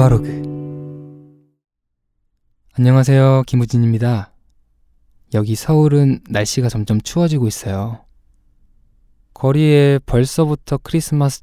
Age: 20-39